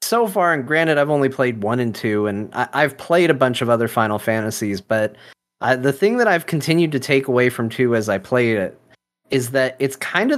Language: English